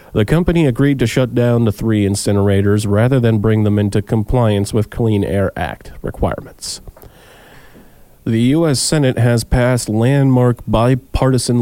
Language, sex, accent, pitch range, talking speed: English, male, American, 100-115 Hz, 140 wpm